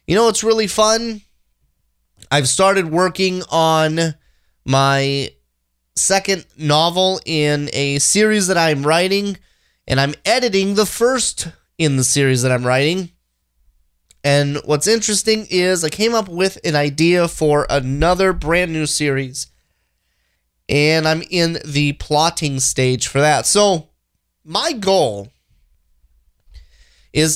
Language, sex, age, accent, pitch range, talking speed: English, male, 30-49, American, 130-185 Hz, 125 wpm